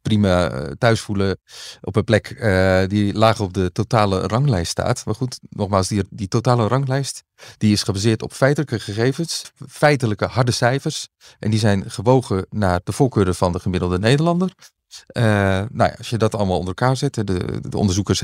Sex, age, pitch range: male, 40-59, 95-120 Hz